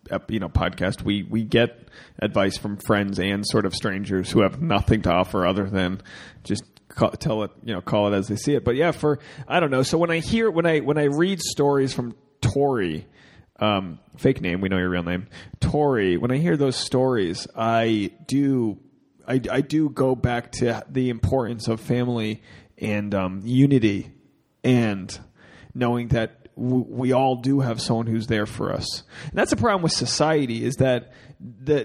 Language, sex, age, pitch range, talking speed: English, male, 30-49, 110-140 Hz, 185 wpm